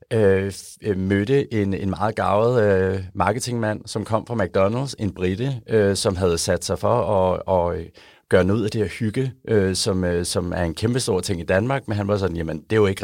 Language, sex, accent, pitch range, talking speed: Danish, male, native, 90-110 Hz, 225 wpm